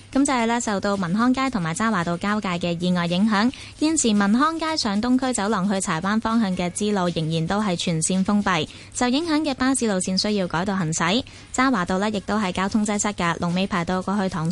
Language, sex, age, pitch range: Chinese, female, 20-39, 185-240 Hz